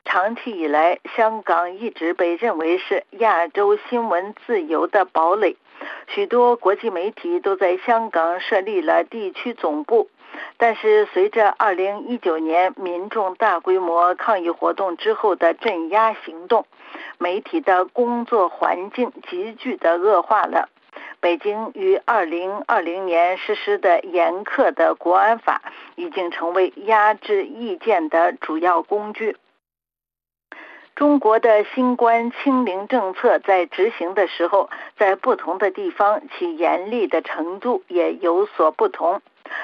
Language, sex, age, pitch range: Chinese, female, 50-69, 185-255 Hz